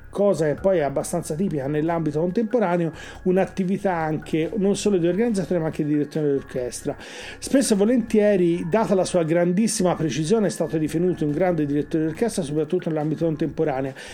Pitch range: 150-190 Hz